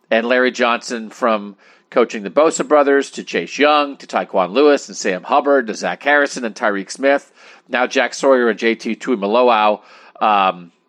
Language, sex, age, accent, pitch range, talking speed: English, male, 40-59, American, 110-140 Hz, 165 wpm